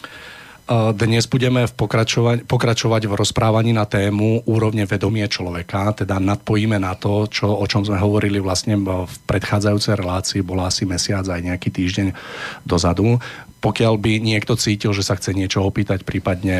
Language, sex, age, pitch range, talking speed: Slovak, male, 40-59, 90-105 Hz, 150 wpm